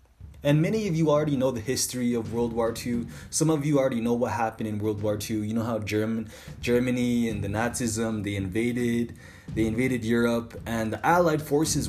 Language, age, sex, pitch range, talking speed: English, 20-39, male, 105-145 Hz, 200 wpm